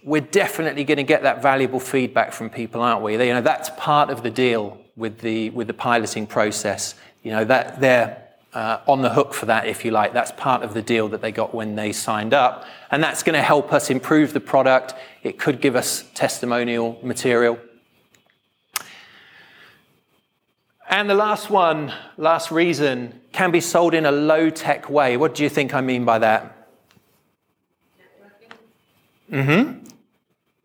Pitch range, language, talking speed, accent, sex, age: 130-185 Hz, English, 175 wpm, British, male, 30-49